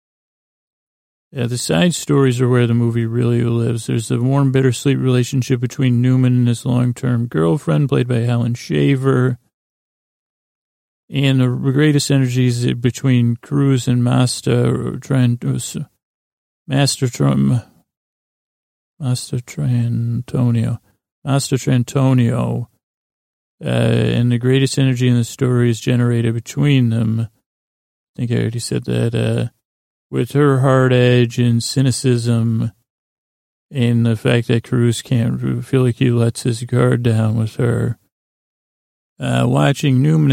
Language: English